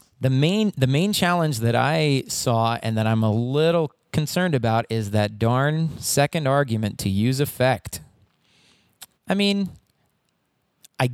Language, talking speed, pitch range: English, 140 wpm, 115-145 Hz